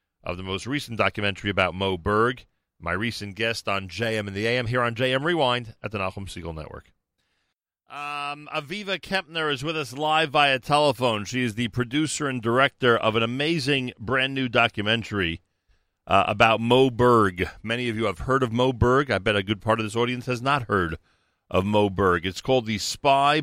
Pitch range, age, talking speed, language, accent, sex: 95-125 Hz, 40-59, 195 wpm, English, American, male